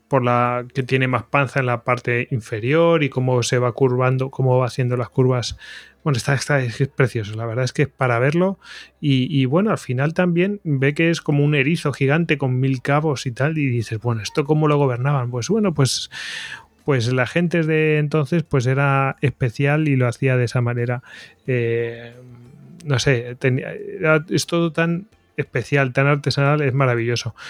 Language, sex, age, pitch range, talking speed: Spanish, male, 30-49, 125-155 Hz, 185 wpm